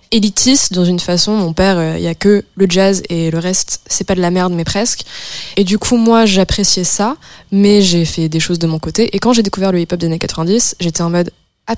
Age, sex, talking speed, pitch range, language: 20-39, female, 255 wpm, 170-205 Hz, French